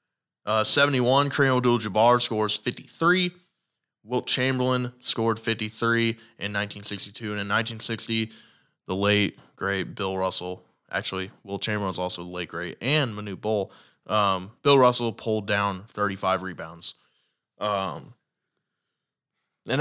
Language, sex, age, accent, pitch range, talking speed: English, male, 20-39, American, 100-125 Hz, 120 wpm